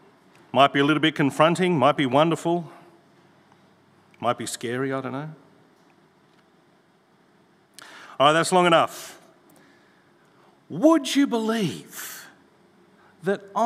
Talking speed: 110 wpm